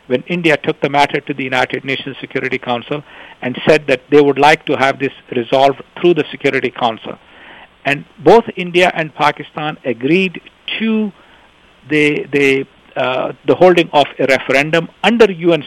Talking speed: 160 wpm